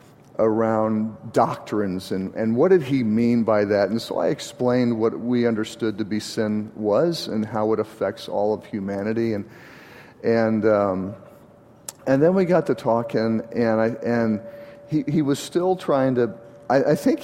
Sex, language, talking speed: male, English, 175 wpm